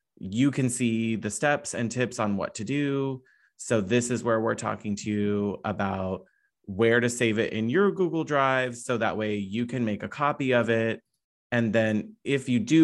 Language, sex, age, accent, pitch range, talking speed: English, male, 30-49, American, 105-125 Hz, 200 wpm